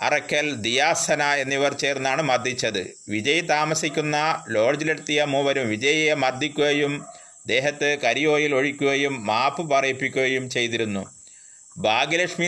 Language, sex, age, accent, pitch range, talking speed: Malayalam, male, 30-49, native, 135-155 Hz, 85 wpm